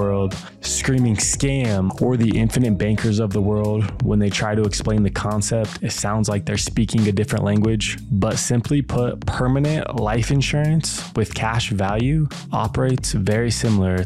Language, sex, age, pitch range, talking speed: English, male, 20-39, 105-125 Hz, 160 wpm